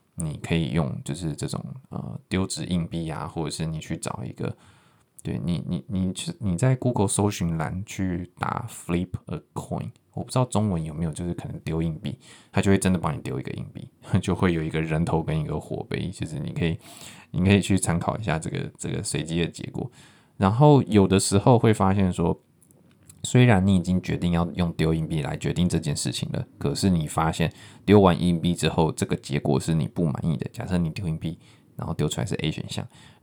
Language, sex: Chinese, male